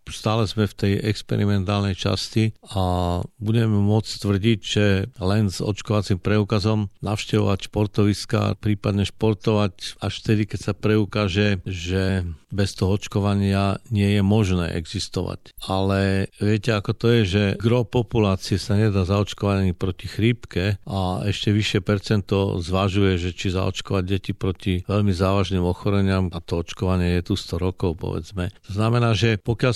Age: 50-69